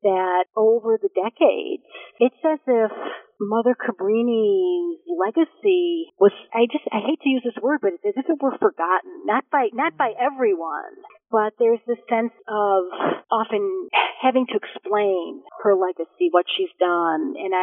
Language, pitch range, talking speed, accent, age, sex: English, 185-265 Hz, 155 wpm, American, 40-59, female